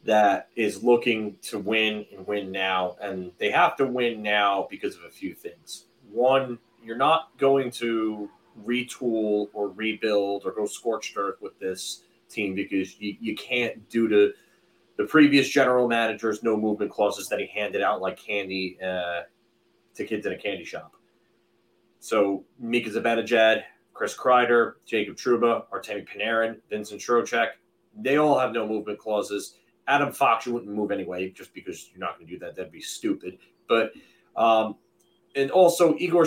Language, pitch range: English, 105-125 Hz